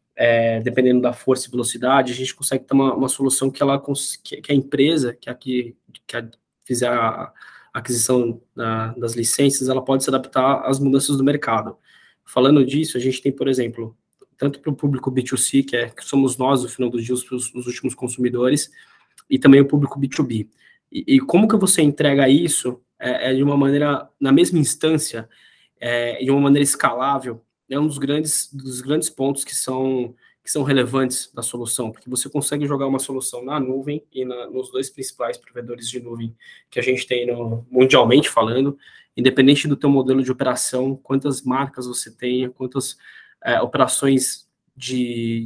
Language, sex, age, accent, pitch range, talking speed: Portuguese, male, 20-39, Brazilian, 125-140 Hz, 190 wpm